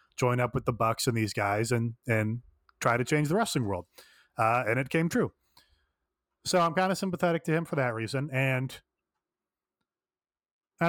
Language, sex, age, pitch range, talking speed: English, male, 30-49, 115-155 Hz, 180 wpm